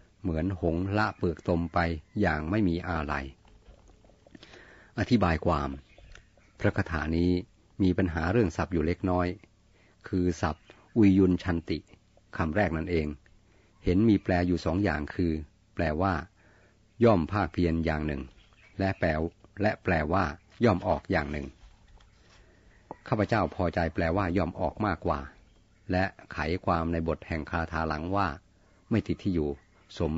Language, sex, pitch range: Thai, male, 85-105 Hz